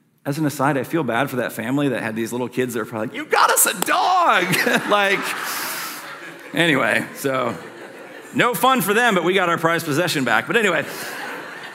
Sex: male